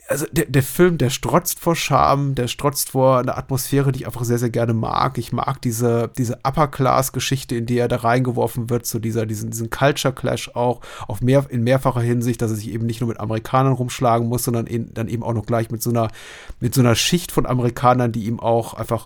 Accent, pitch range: German, 115-145 Hz